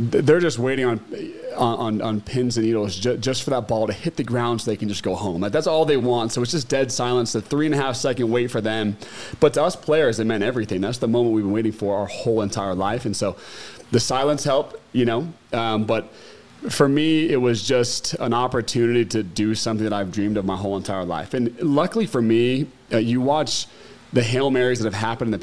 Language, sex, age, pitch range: English, male, 30-49, 110-130 Hz